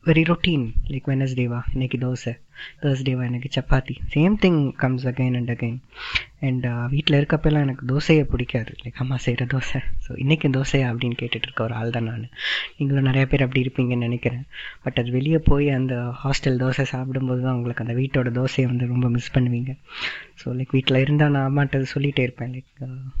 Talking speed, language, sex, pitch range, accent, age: 170 wpm, Tamil, female, 125-140 Hz, native, 20-39